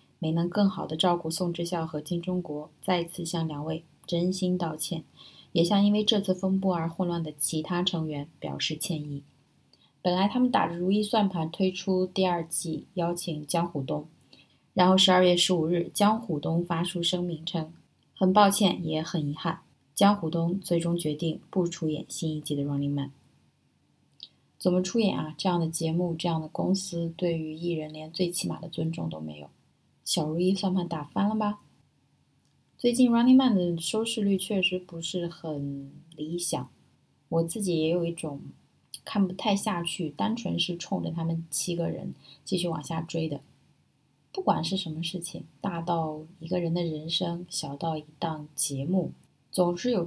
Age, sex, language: 20-39, female, Chinese